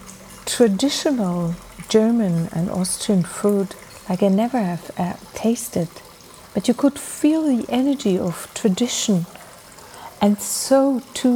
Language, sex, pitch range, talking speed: English, female, 185-245 Hz, 115 wpm